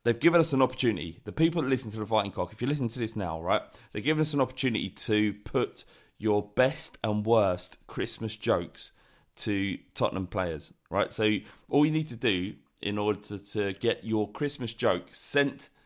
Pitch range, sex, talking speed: 100-120 Hz, male, 195 wpm